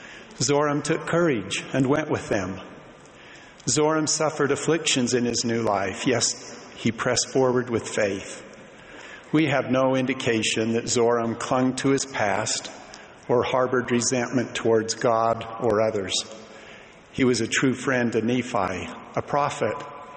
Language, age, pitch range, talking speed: English, 50-69, 115-135 Hz, 135 wpm